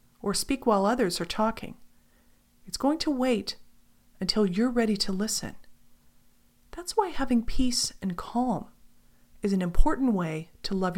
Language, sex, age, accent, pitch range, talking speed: English, female, 40-59, American, 170-240 Hz, 150 wpm